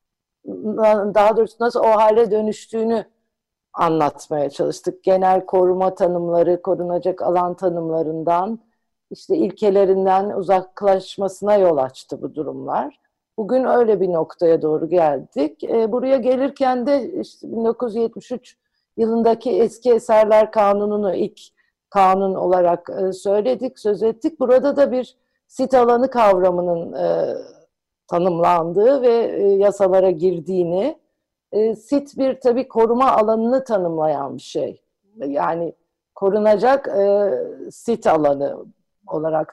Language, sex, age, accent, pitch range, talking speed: Turkish, female, 50-69, native, 180-245 Hz, 105 wpm